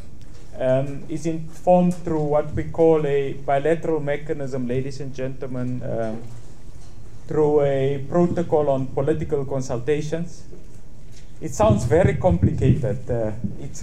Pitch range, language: 130-165 Hz, English